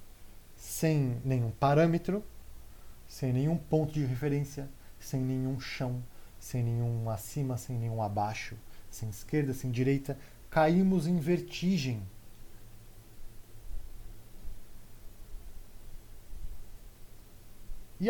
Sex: male